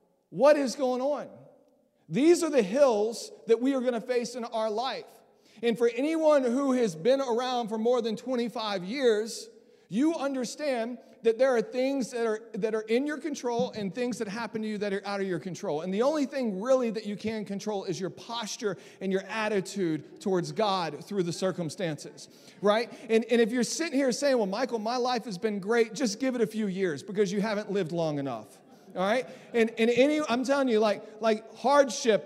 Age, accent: 40-59, American